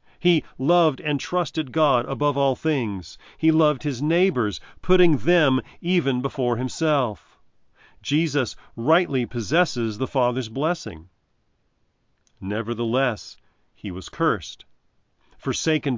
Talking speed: 105 wpm